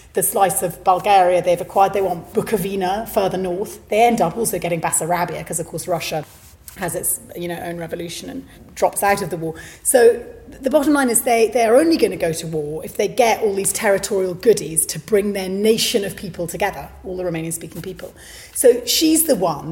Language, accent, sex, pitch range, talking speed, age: English, British, female, 170-220 Hz, 205 wpm, 30-49